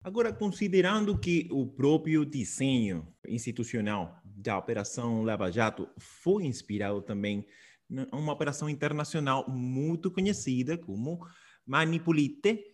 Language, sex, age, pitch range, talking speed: Spanish, male, 20-39, 120-155 Hz, 105 wpm